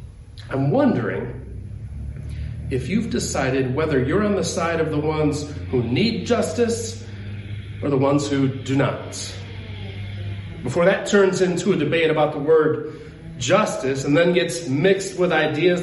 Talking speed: 145 wpm